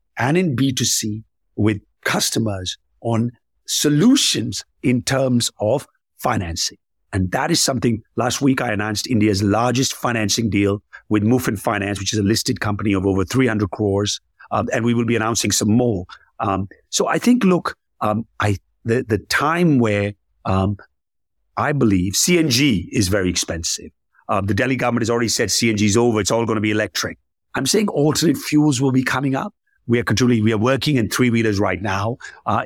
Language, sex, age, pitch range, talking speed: English, male, 50-69, 105-130 Hz, 180 wpm